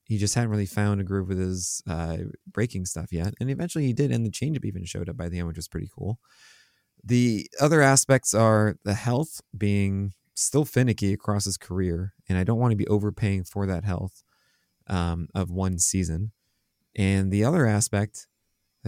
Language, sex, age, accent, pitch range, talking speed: English, male, 20-39, American, 95-120 Hz, 190 wpm